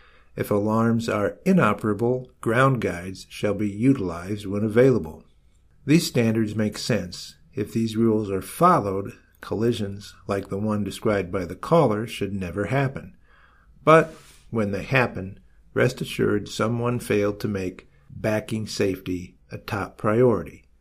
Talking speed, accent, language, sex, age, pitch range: 135 wpm, American, English, male, 50-69, 100-125 Hz